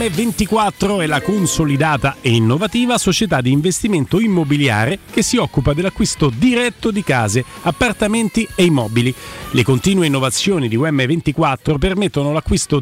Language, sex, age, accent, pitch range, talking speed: Italian, male, 40-59, native, 135-200 Hz, 125 wpm